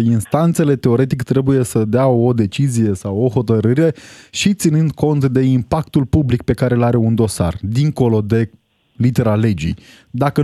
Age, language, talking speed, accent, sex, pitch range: 20-39, Romanian, 155 wpm, native, male, 110-160 Hz